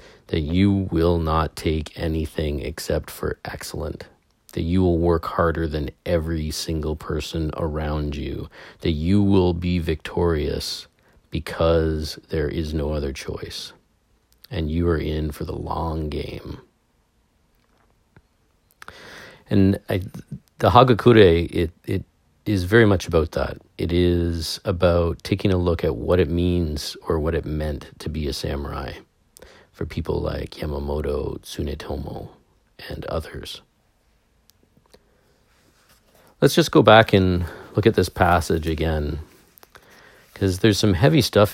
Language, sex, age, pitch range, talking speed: English, male, 40-59, 80-95 Hz, 130 wpm